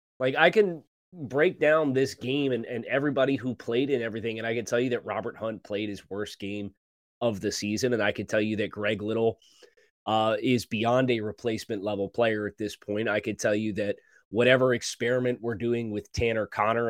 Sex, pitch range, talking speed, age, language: male, 105-125 Hz, 210 wpm, 20-39, English